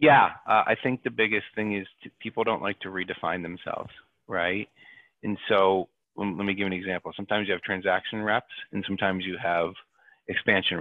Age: 30-49